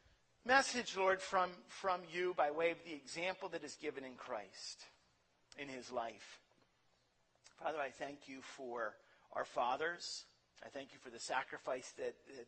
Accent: American